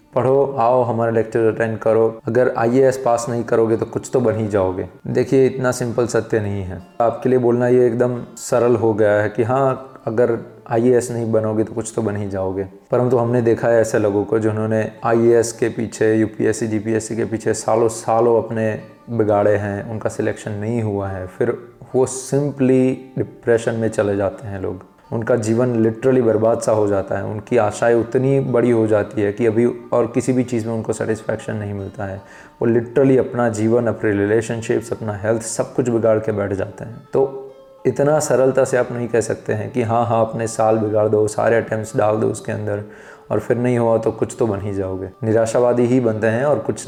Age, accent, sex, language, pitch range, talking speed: 20-39, native, male, Hindi, 110-125 Hz, 205 wpm